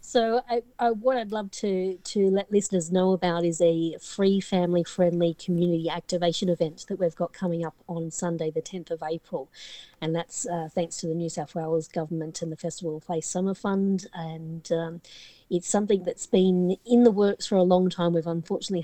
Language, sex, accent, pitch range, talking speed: English, female, Australian, 165-190 Hz, 200 wpm